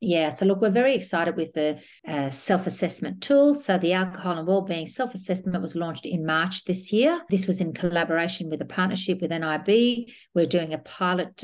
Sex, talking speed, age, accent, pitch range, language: female, 190 wpm, 50-69, Australian, 165-200 Hz, English